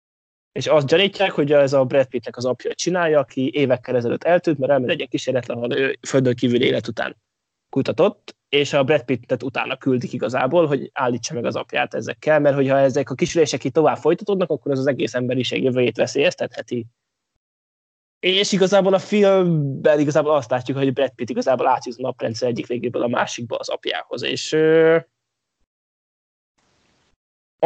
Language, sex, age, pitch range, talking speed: Hungarian, male, 20-39, 130-165 Hz, 160 wpm